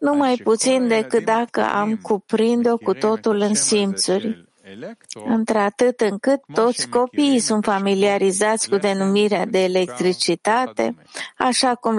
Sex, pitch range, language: female, 190-230 Hz, English